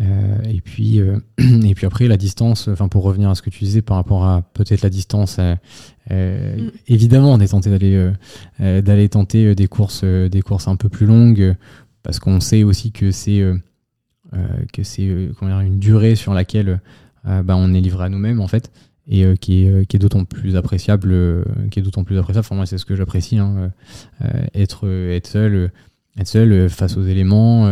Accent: French